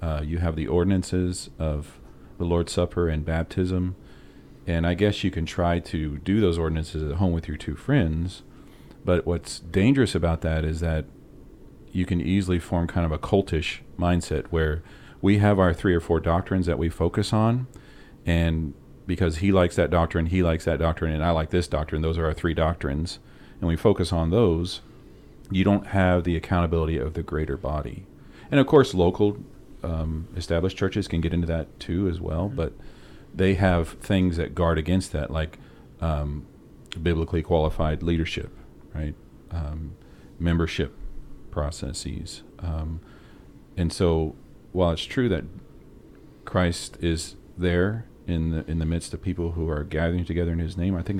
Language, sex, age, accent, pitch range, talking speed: English, male, 40-59, American, 80-90 Hz, 170 wpm